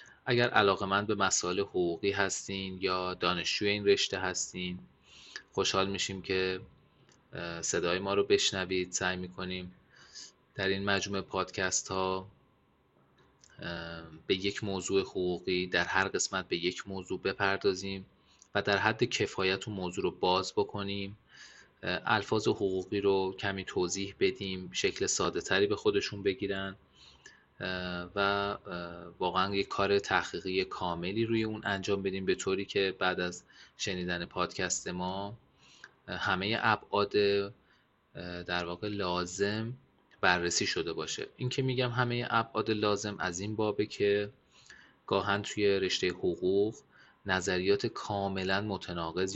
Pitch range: 90-105 Hz